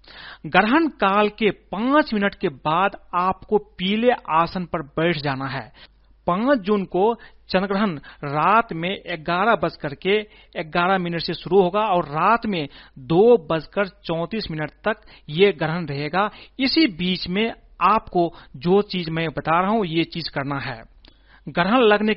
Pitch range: 160-210 Hz